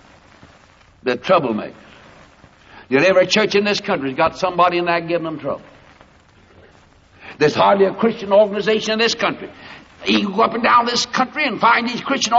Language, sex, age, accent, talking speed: English, male, 60-79, American, 165 wpm